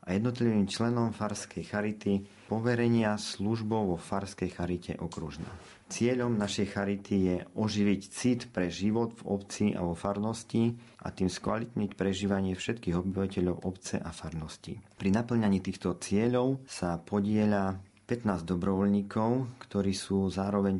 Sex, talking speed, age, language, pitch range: male, 125 wpm, 40-59, Slovak, 90-105 Hz